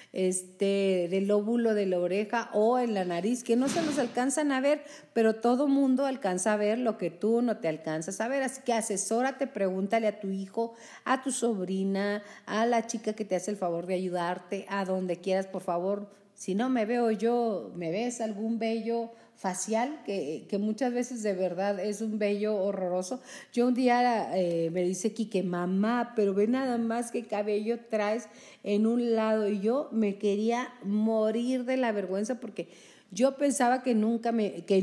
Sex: female